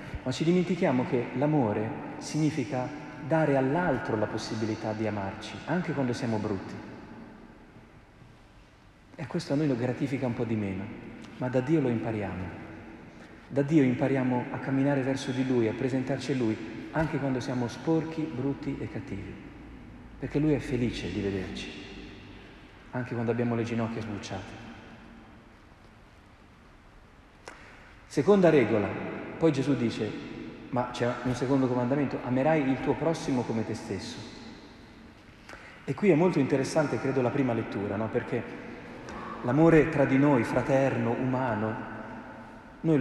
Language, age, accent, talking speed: Italian, 40-59, native, 135 wpm